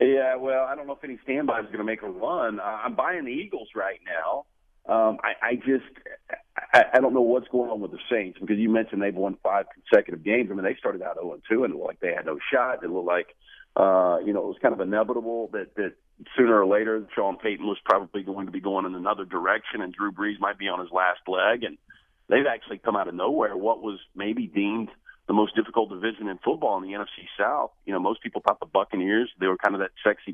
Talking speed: 250 wpm